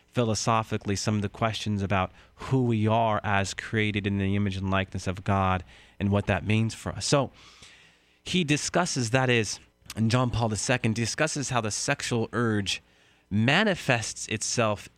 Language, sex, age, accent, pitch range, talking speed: English, male, 30-49, American, 100-130 Hz, 160 wpm